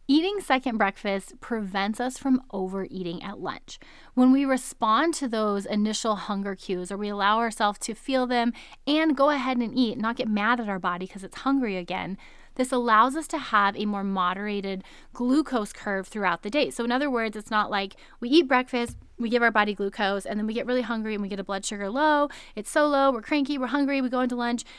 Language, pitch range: English, 200-255 Hz